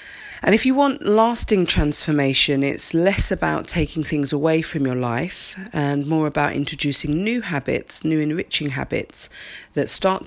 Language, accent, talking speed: English, British, 150 wpm